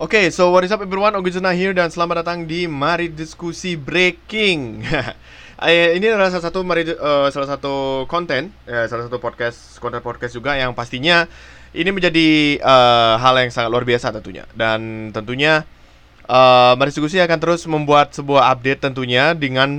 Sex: male